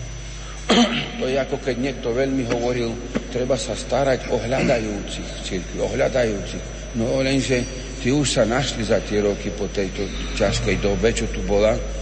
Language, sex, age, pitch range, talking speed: Slovak, male, 60-79, 105-135 Hz, 150 wpm